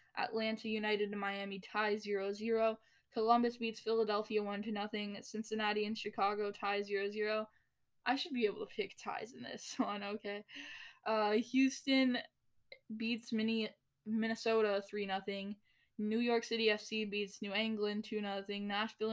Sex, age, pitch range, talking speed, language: female, 10-29, 200-225 Hz, 130 wpm, English